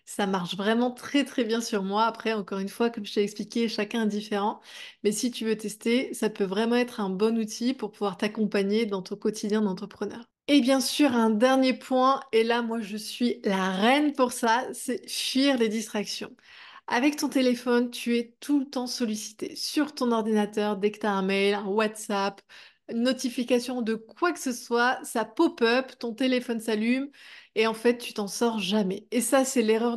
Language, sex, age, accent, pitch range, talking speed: French, female, 20-39, French, 215-250 Hz, 200 wpm